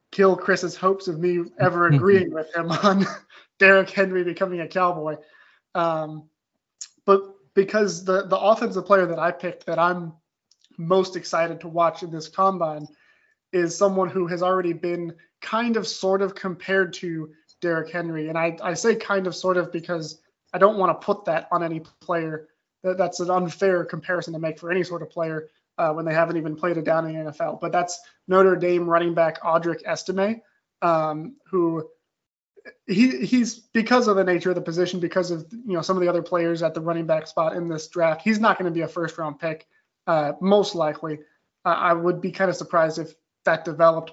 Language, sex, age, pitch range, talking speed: English, male, 20-39, 165-190 Hz, 195 wpm